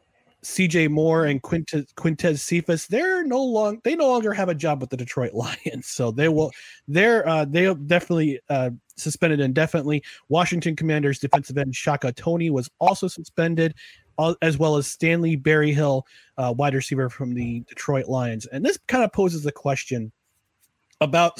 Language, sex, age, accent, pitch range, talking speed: English, male, 30-49, American, 135-180 Hz, 170 wpm